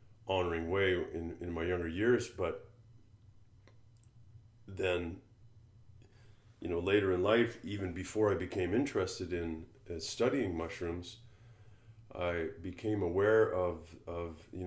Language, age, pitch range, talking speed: English, 30-49, 90-115 Hz, 120 wpm